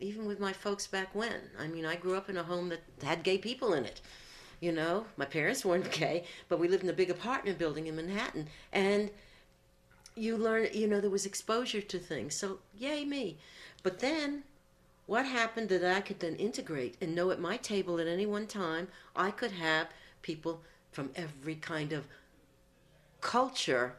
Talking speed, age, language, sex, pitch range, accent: 190 wpm, 60-79, English, female, 150-200 Hz, American